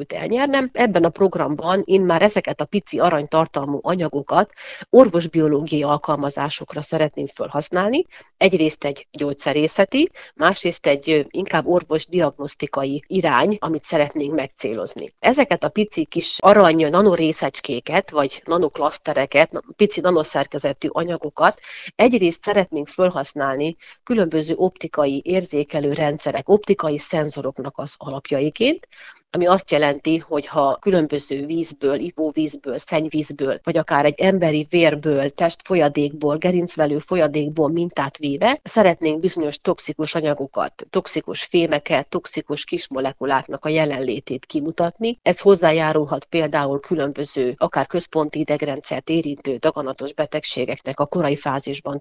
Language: Hungarian